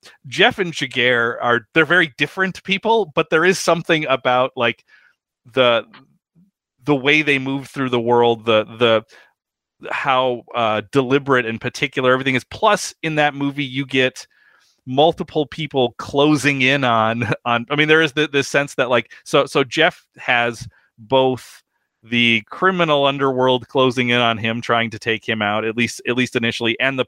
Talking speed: 165 wpm